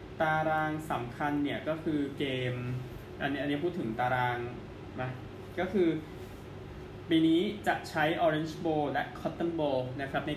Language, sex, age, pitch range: Thai, male, 20-39, 120-150 Hz